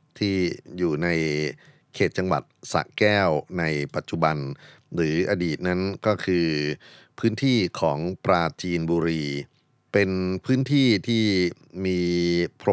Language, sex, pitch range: Thai, male, 80-105 Hz